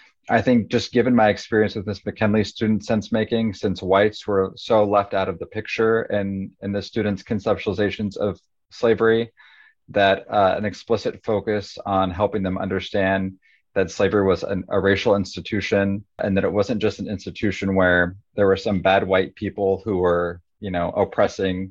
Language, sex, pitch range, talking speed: English, male, 95-105 Hz, 175 wpm